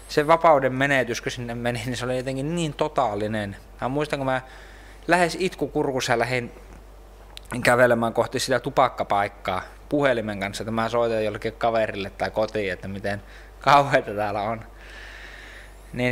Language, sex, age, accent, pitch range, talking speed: Finnish, male, 20-39, native, 110-140 Hz, 140 wpm